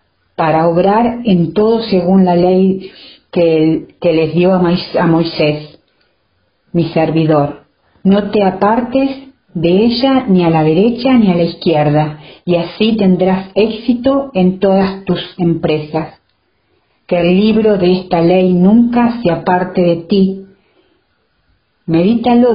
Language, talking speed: Spanish, 130 wpm